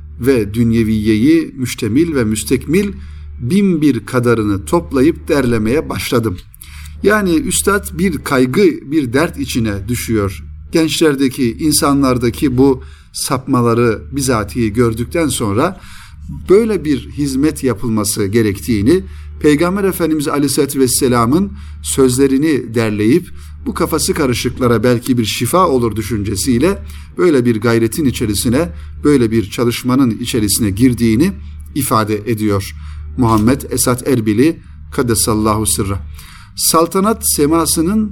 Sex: male